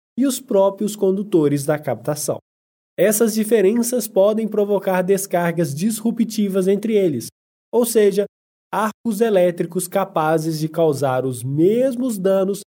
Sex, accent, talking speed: male, Brazilian, 115 wpm